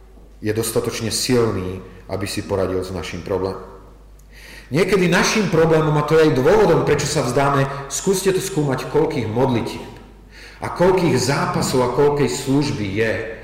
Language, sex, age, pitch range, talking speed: Slovak, male, 40-59, 105-150 Hz, 145 wpm